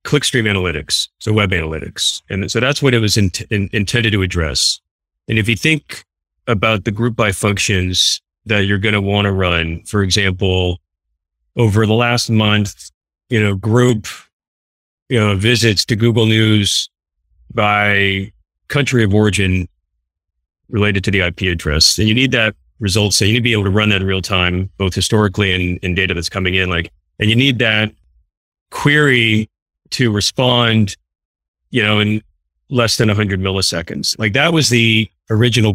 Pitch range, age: 85-115 Hz, 30-49